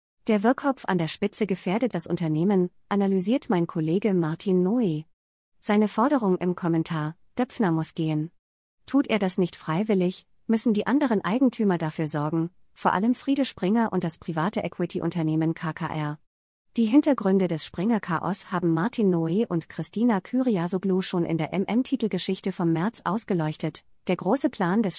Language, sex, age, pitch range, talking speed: German, female, 30-49, 165-215 Hz, 145 wpm